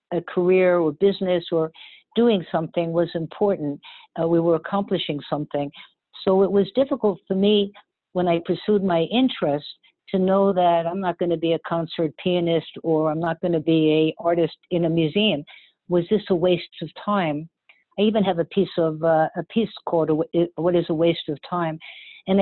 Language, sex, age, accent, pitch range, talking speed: English, female, 60-79, American, 165-195 Hz, 180 wpm